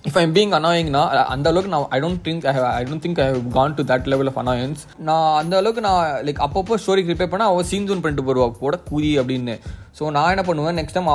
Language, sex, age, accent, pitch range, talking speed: Tamil, male, 20-39, native, 130-155 Hz, 235 wpm